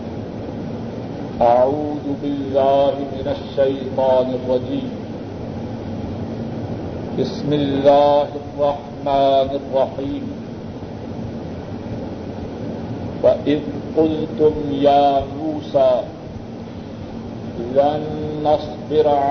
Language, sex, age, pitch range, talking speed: Urdu, male, 50-69, 140-155 Hz, 45 wpm